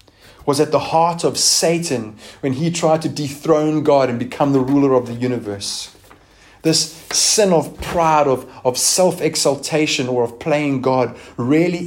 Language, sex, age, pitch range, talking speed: English, male, 30-49, 110-135 Hz, 155 wpm